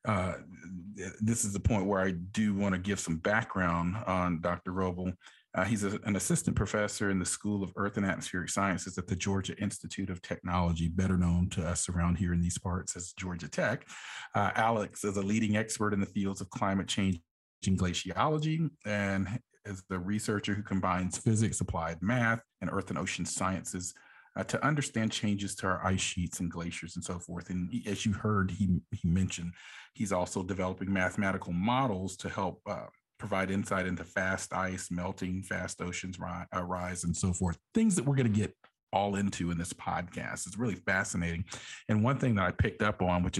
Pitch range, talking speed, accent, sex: 90-105 Hz, 195 wpm, American, male